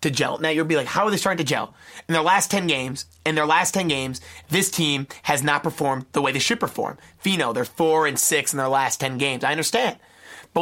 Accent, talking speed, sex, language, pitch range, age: American, 255 wpm, male, English, 140-185 Hz, 30-49